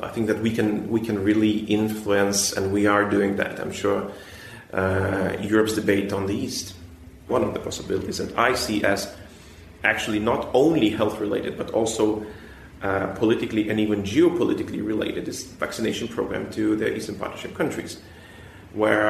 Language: English